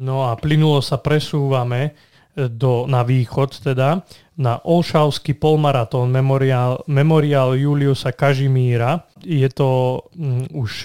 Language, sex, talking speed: Slovak, male, 110 wpm